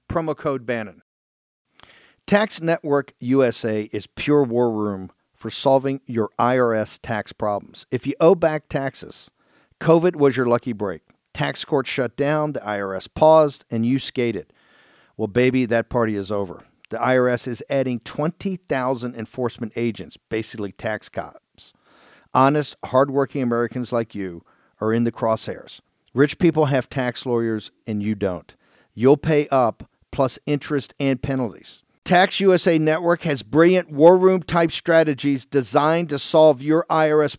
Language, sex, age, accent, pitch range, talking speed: English, male, 50-69, American, 120-155 Hz, 145 wpm